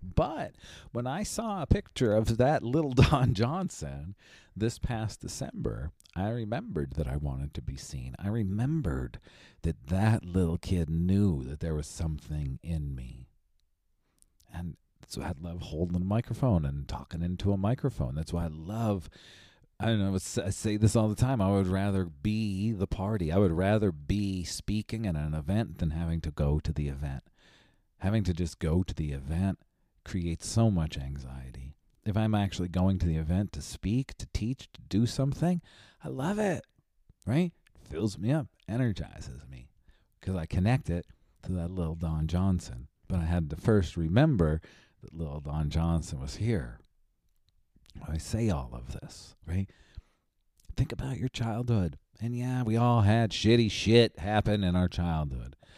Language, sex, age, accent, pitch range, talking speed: English, male, 40-59, American, 80-110 Hz, 170 wpm